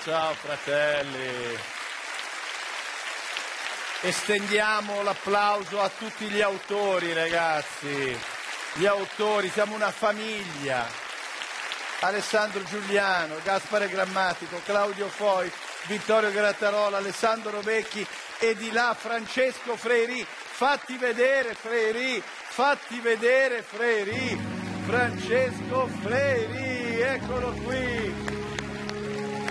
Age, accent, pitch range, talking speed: 50-69, native, 130-210 Hz, 80 wpm